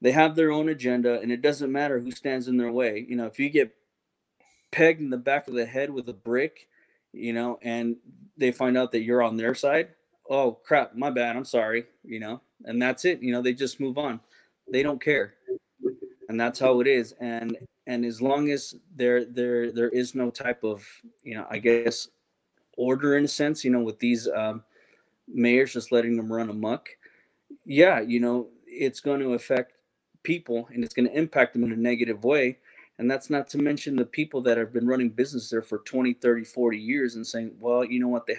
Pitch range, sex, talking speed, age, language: 115-135 Hz, male, 215 wpm, 20-39, English